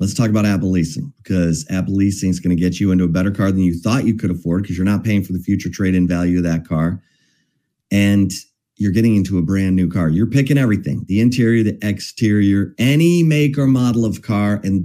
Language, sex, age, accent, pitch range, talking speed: English, male, 30-49, American, 95-125 Hz, 230 wpm